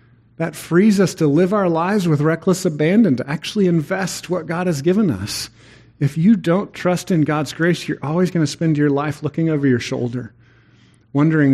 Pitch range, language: 120-160 Hz, English